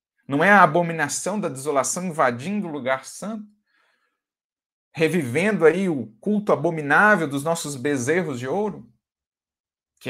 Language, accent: Portuguese, Brazilian